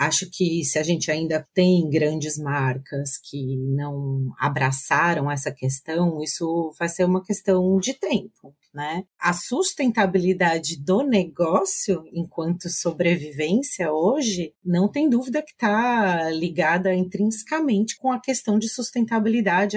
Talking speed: 125 wpm